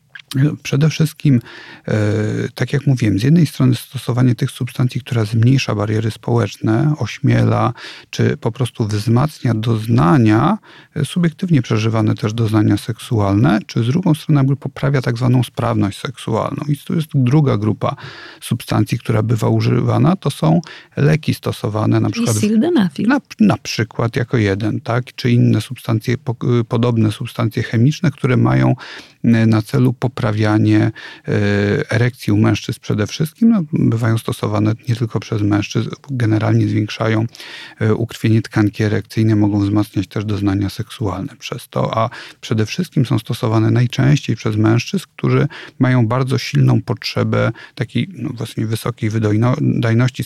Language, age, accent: Polish, 40-59, native